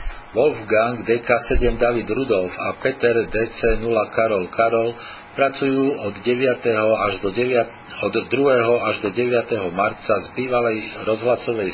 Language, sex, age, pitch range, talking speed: Slovak, male, 50-69, 105-120 Hz, 125 wpm